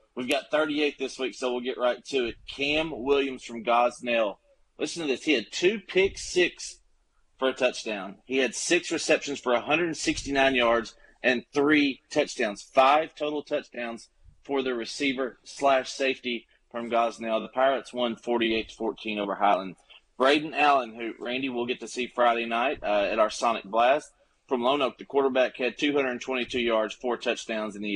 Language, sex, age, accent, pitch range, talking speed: English, male, 30-49, American, 115-140 Hz, 170 wpm